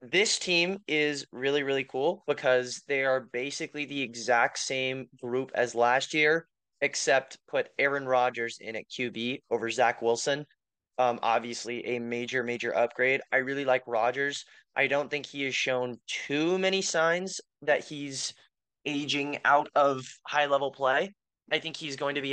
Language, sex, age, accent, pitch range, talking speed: English, male, 20-39, American, 125-145 Hz, 160 wpm